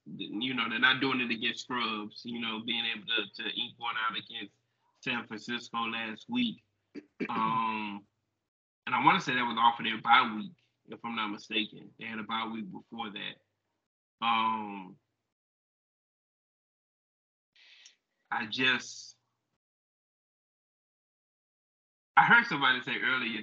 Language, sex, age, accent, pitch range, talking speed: English, male, 20-39, American, 115-185 Hz, 140 wpm